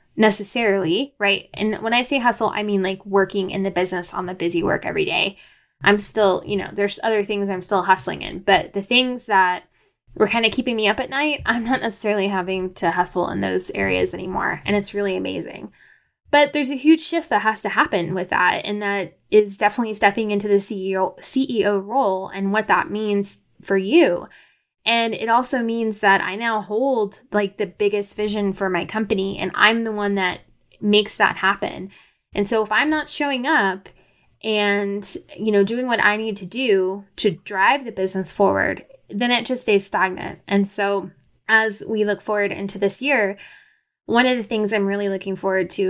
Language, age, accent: English, 10-29, American